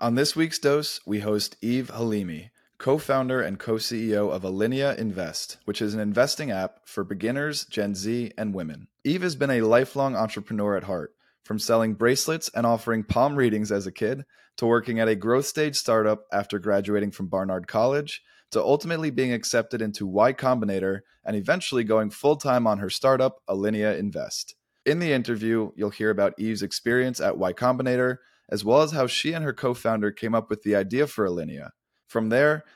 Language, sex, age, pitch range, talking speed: English, male, 20-39, 105-130 Hz, 180 wpm